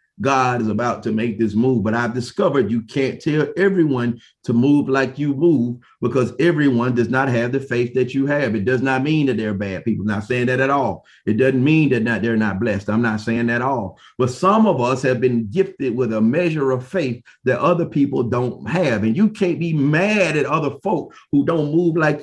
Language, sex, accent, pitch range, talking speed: English, male, American, 130-170 Hz, 225 wpm